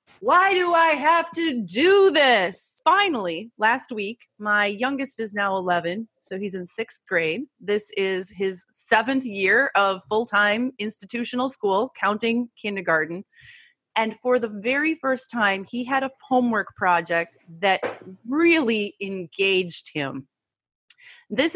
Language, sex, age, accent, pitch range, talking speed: English, female, 30-49, American, 195-250 Hz, 130 wpm